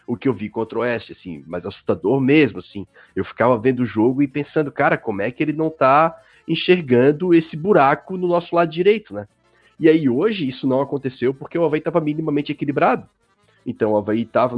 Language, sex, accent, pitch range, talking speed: Portuguese, male, Brazilian, 110-150 Hz, 205 wpm